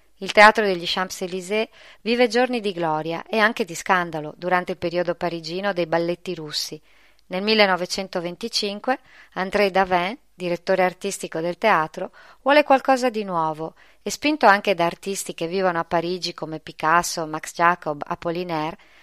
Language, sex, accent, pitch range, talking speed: Italian, female, native, 170-220 Hz, 140 wpm